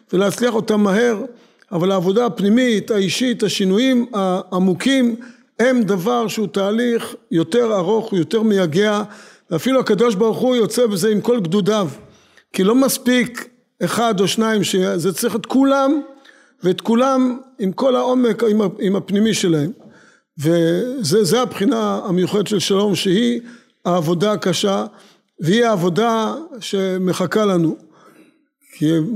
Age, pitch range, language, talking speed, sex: 50-69, 185-235 Hz, Hebrew, 120 wpm, male